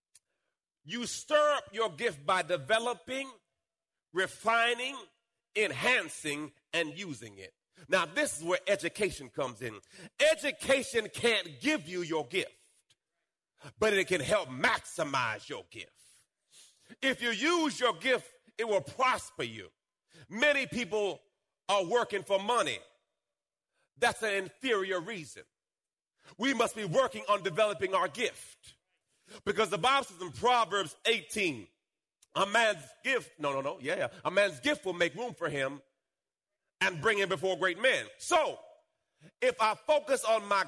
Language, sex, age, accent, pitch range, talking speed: English, male, 40-59, American, 180-260 Hz, 140 wpm